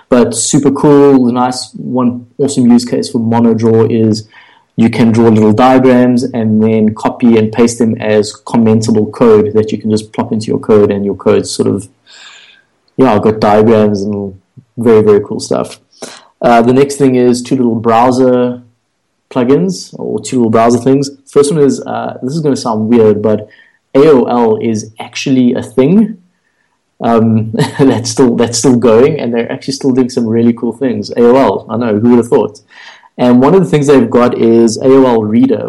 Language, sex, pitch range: English, male, 110-130 Hz